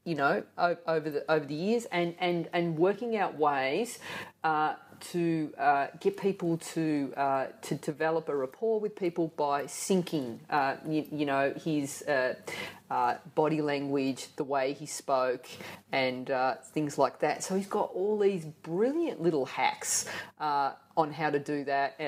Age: 30-49